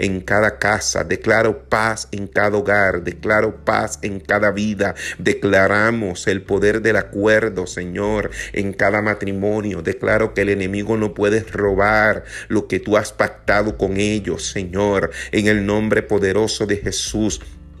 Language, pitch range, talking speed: Spanish, 100-110 Hz, 145 wpm